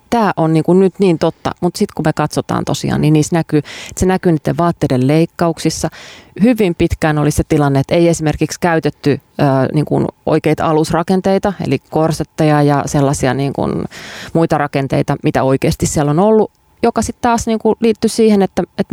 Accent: native